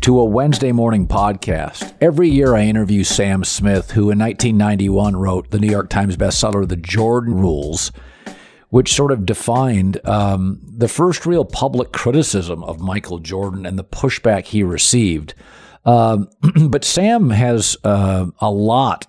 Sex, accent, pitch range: male, American, 100-120 Hz